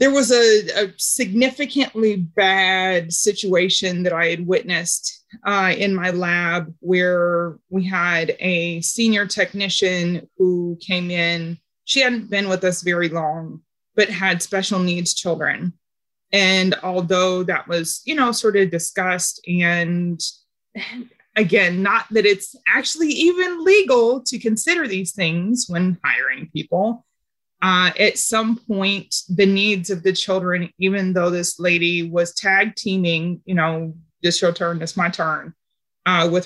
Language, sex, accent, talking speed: English, female, American, 140 wpm